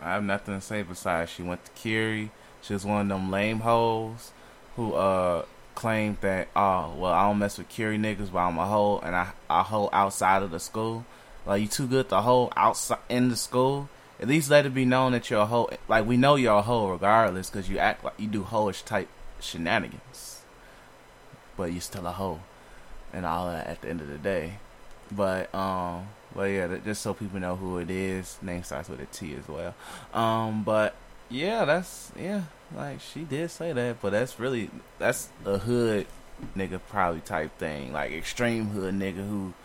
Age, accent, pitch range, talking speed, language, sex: 20-39, American, 90-110 Hz, 200 wpm, English, male